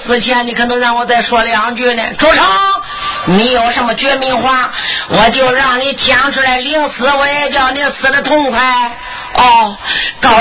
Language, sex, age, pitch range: Chinese, male, 50-69, 200-270 Hz